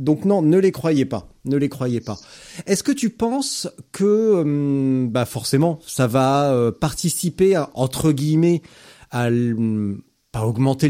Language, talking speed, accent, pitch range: French, 150 wpm, French, 120-155 Hz